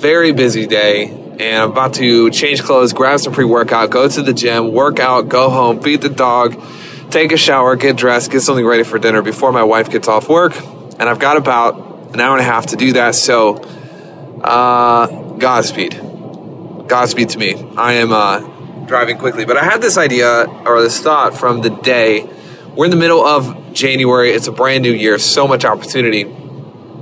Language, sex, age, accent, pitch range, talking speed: English, male, 20-39, American, 120-145 Hz, 195 wpm